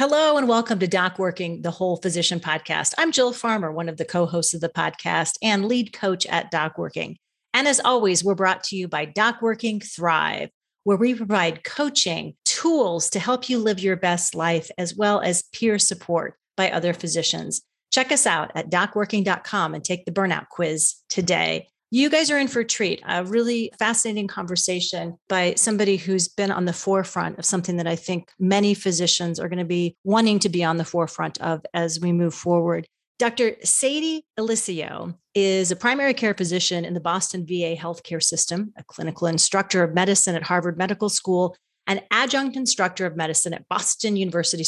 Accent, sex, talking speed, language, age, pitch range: American, female, 185 wpm, English, 40-59, 170-210 Hz